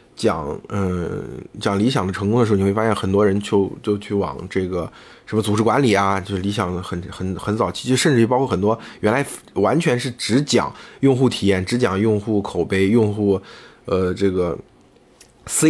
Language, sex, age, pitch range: Chinese, male, 20-39, 95-120 Hz